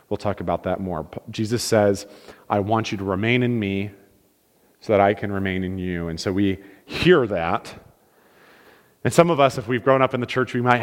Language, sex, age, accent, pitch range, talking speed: English, male, 30-49, American, 110-135 Hz, 215 wpm